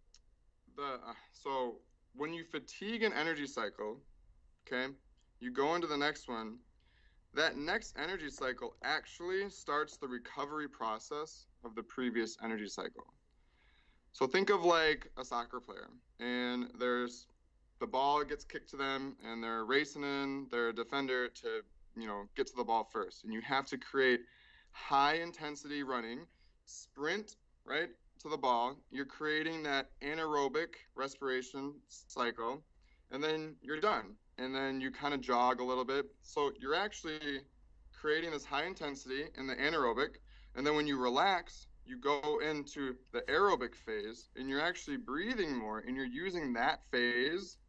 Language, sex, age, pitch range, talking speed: English, male, 20-39, 120-150 Hz, 150 wpm